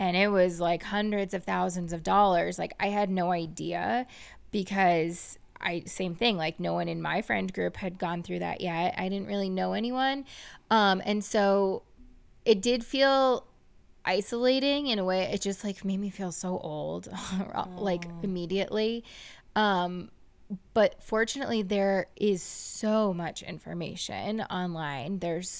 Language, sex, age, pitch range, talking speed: English, female, 20-39, 185-230 Hz, 150 wpm